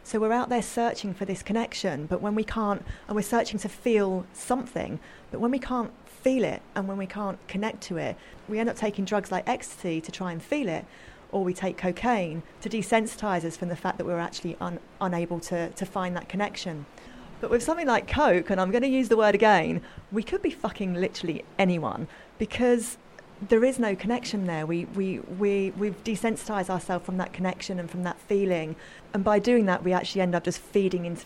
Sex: female